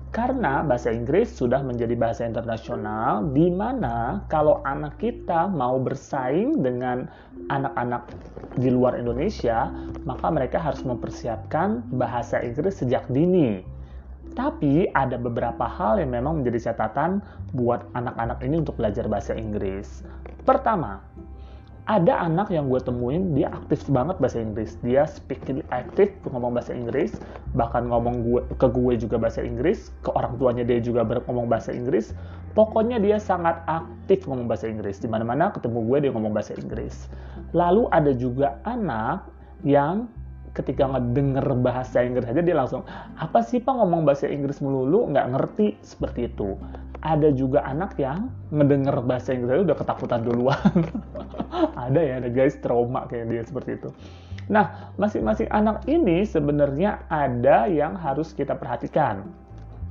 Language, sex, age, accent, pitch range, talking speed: Indonesian, male, 30-49, native, 110-150 Hz, 140 wpm